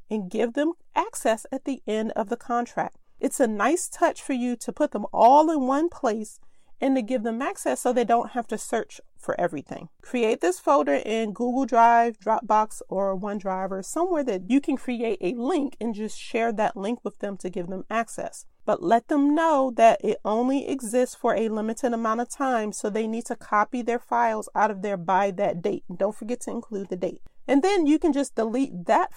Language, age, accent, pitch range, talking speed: English, 40-59, American, 210-270 Hz, 215 wpm